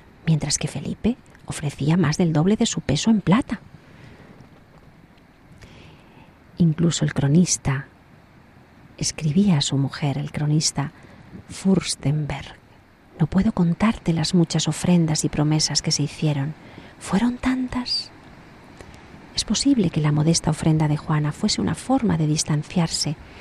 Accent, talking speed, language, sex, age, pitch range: Spanish, 125 wpm, Spanish, female, 40-59, 145-175 Hz